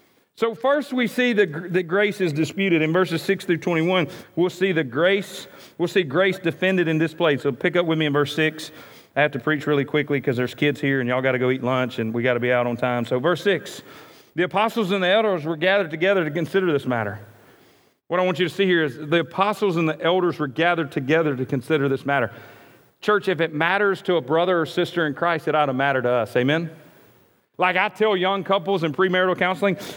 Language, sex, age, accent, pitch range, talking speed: English, male, 40-59, American, 150-235 Hz, 230 wpm